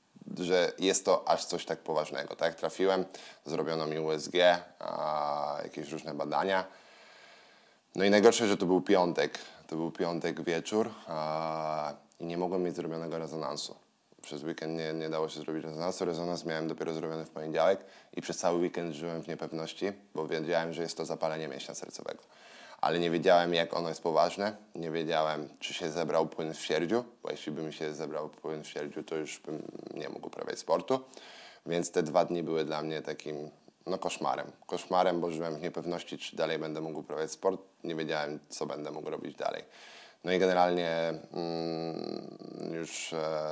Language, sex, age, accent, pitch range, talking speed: Polish, male, 10-29, native, 80-85 Hz, 170 wpm